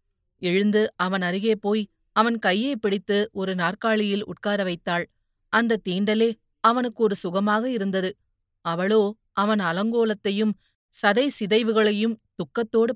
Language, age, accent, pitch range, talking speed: Tamil, 30-49, native, 185-220 Hz, 100 wpm